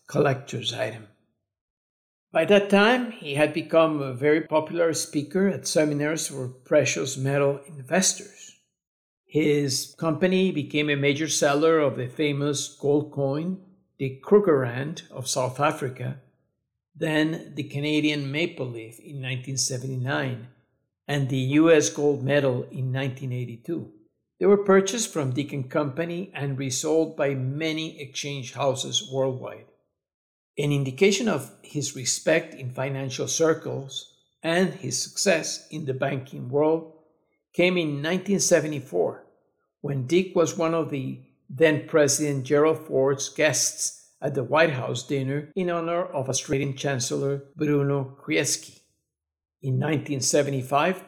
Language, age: English, 60-79